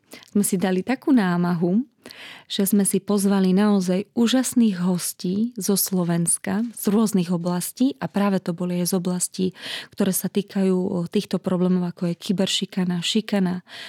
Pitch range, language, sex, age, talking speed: 185-210 Hz, Slovak, female, 20-39, 140 wpm